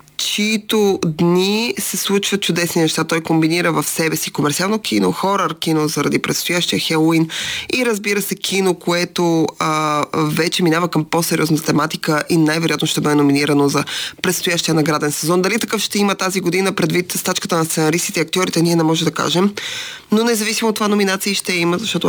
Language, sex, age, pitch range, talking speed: Bulgarian, female, 20-39, 155-195 Hz, 170 wpm